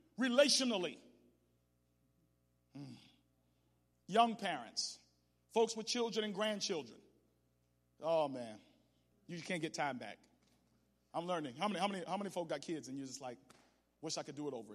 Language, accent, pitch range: English, American, 175-255 Hz